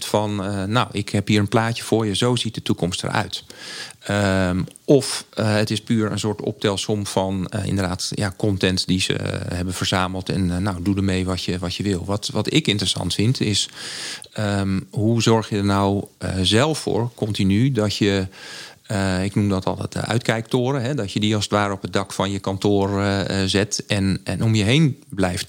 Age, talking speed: 40-59, 210 wpm